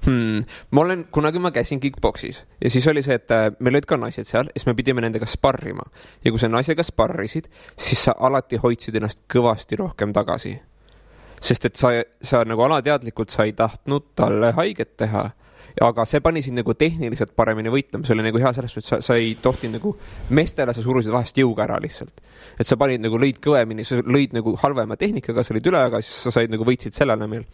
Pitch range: 115-140 Hz